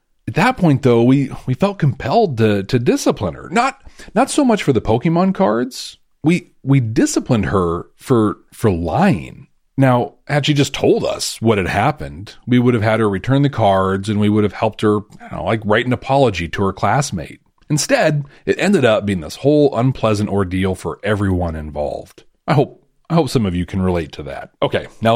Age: 40-59